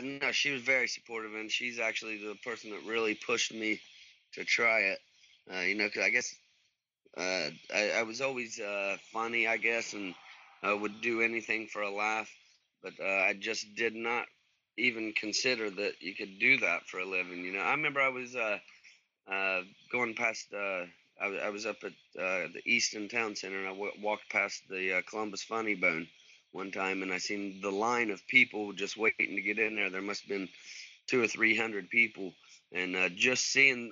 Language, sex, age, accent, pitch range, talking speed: English, male, 30-49, American, 100-120 Hz, 200 wpm